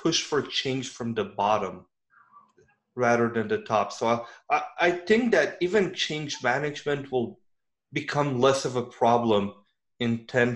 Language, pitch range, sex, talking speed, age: English, 120-155 Hz, male, 150 wpm, 30-49